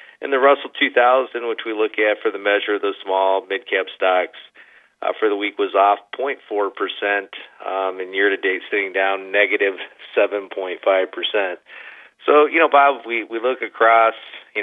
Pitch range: 95-125 Hz